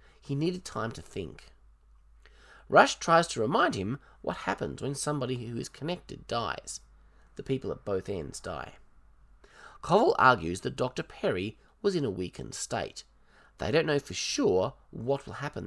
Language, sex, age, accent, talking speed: English, male, 30-49, Australian, 160 wpm